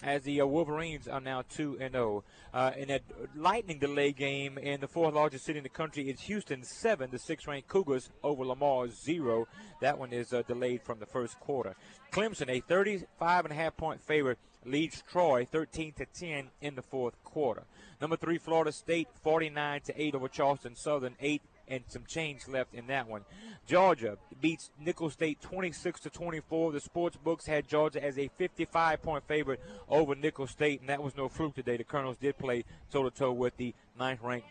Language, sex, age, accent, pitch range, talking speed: English, male, 30-49, American, 130-160 Hz, 180 wpm